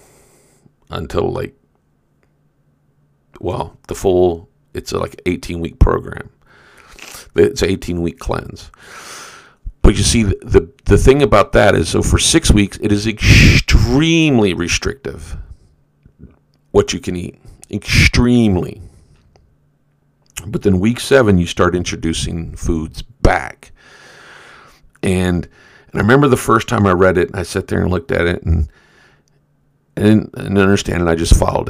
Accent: American